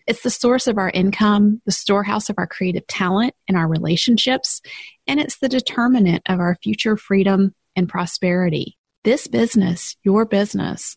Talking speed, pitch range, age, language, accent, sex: 160 wpm, 170-215 Hz, 30-49, English, American, female